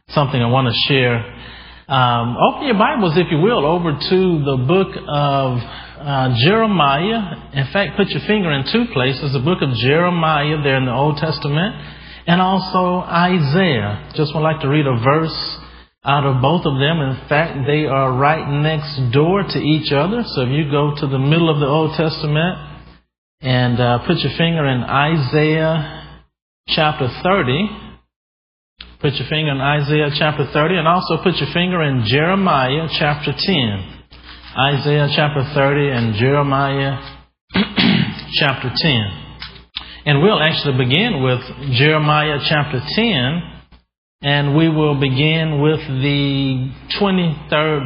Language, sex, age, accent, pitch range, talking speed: English, male, 40-59, American, 135-160 Hz, 150 wpm